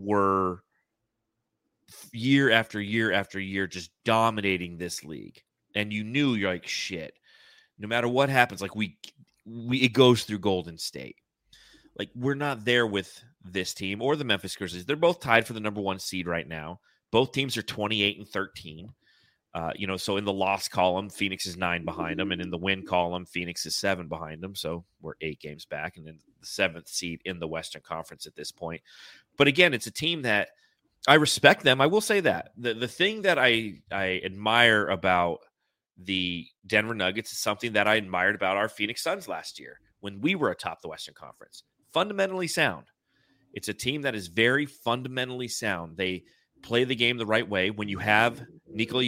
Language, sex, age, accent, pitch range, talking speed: English, male, 30-49, American, 95-120 Hz, 195 wpm